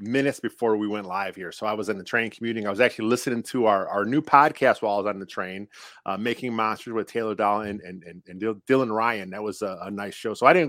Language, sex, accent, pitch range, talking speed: English, male, American, 110-145 Hz, 275 wpm